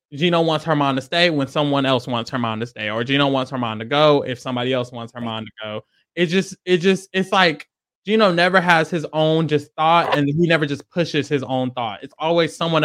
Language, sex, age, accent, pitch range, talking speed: English, male, 20-39, American, 140-205 Hz, 245 wpm